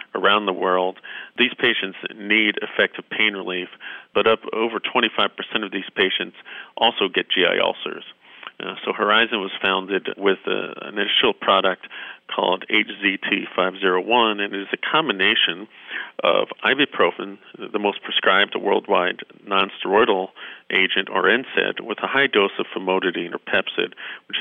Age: 40-59